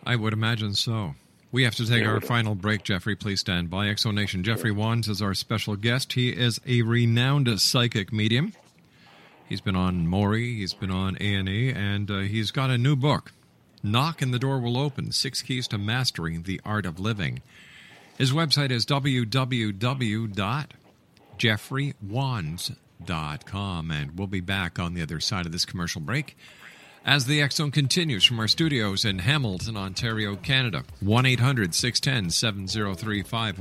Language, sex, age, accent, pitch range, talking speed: English, male, 50-69, American, 100-125 Hz, 155 wpm